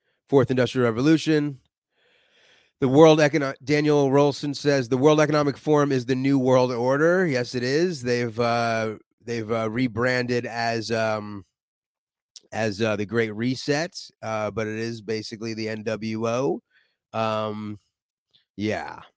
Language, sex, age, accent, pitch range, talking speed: English, male, 30-49, American, 115-145 Hz, 130 wpm